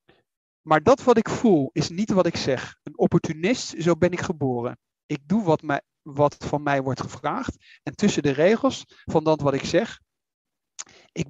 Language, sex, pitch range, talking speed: Dutch, male, 150-215 Hz, 185 wpm